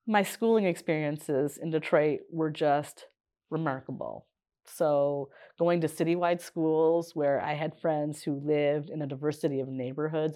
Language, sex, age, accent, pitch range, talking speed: English, female, 30-49, American, 155-190 Hz, 140 wpm